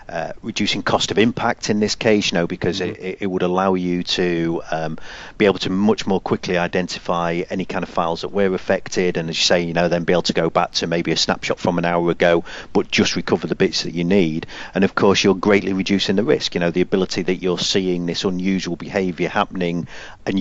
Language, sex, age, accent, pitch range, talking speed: English, male, 40-59, British, 85-105 Hz, 235 wpm